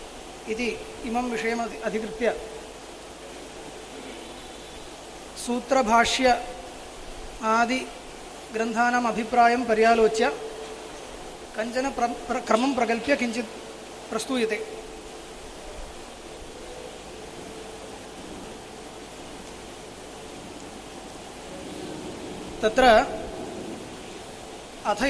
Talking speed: 45 wpm